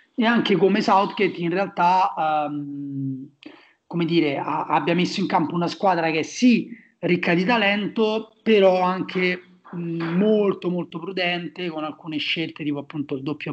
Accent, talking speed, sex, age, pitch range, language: native, 155 wpm, male, 30-49, 155-180 Hz, Italian